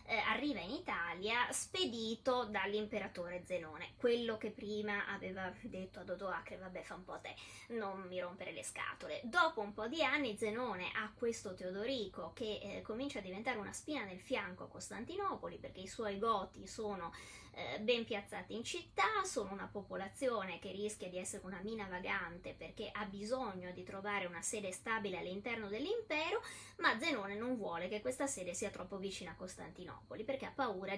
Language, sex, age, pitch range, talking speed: Italian, female, 20-39, 185-245 Hz, 170 wpm